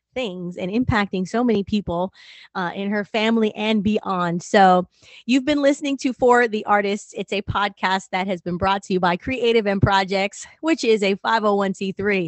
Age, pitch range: 20-39, 185-255 Hz